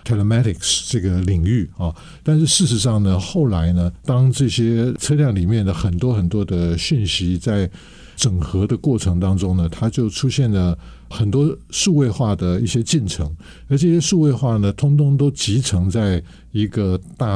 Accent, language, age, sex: American, Chinese, 60-79, male